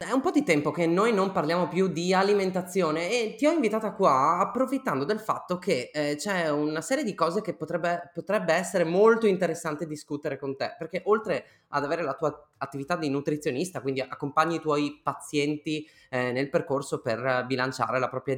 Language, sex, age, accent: Italian, male, 20-39, native